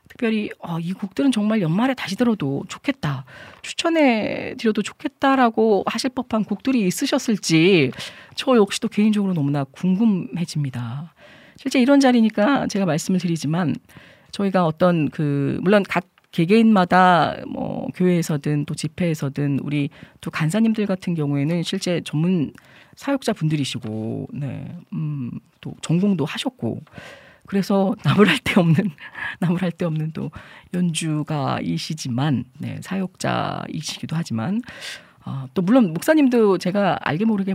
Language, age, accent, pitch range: Korean, 40-59, native, 155-230 Hz